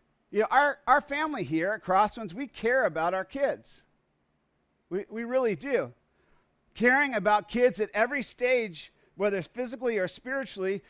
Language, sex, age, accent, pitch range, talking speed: English, male, 50-69, American, 175-225 Hz, 150 wpm